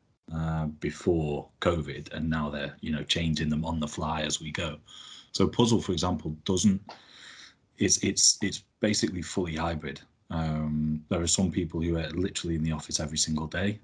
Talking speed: 180 wpm